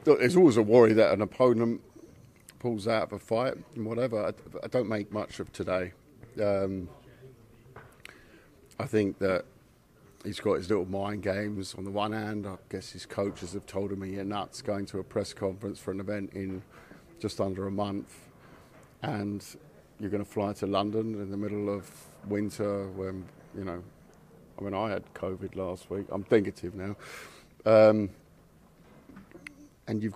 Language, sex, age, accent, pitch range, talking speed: English, male, 50-69, British, 100-115 Hz, 170 wpm